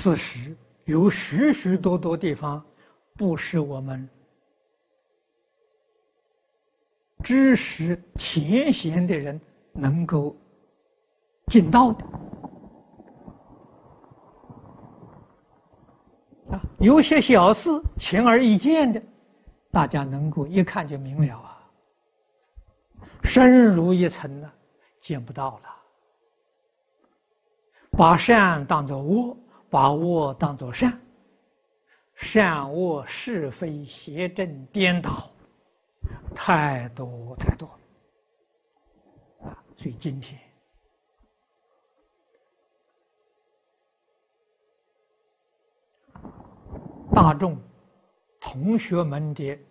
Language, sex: Chinese, male